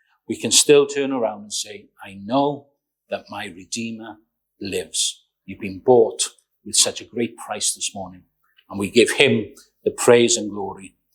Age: 40-59